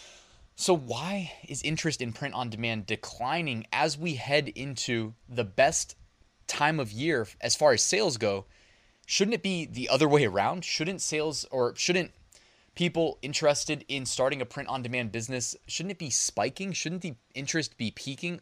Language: English